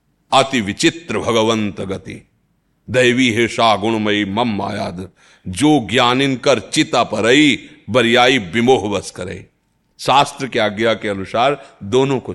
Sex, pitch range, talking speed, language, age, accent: male, 105-145 Hz, 115 wpm, Hindi, 40-59, native